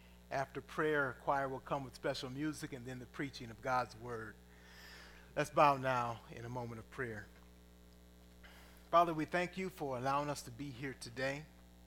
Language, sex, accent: English, male, American